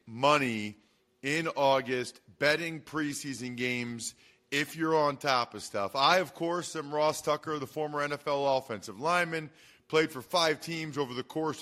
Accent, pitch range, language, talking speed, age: American, 125-155 Hz, English, 155 wpm, 40-59